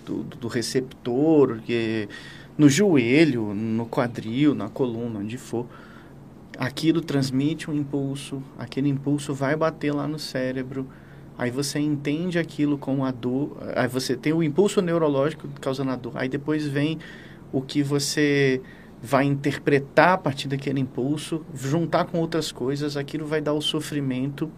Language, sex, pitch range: Portuguese, male, 130-155 Hz